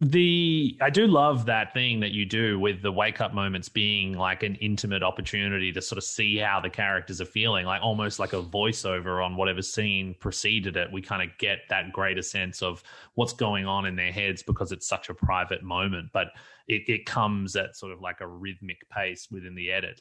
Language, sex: English, male